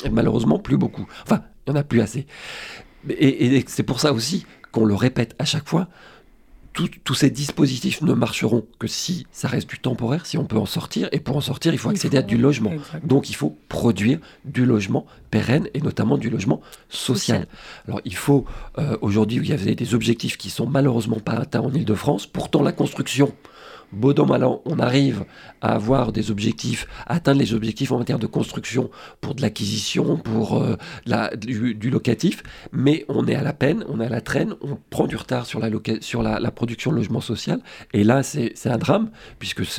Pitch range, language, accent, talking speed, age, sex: 115-140 Hz, French, French, 215 wpm, 50-69, male